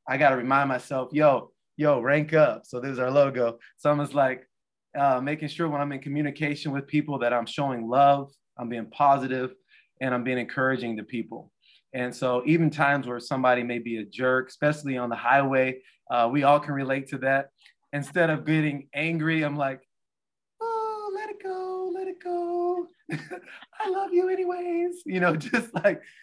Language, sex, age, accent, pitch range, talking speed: English, male, 20-39, American, 130-155 Hz, 190 wpm